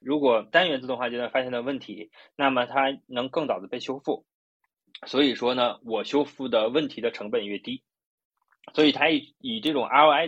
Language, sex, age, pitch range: Chinese, male, 20-39, 115-150 Hz